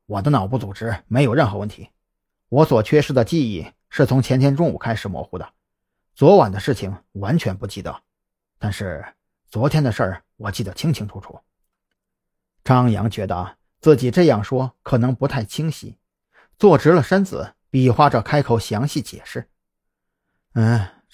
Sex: male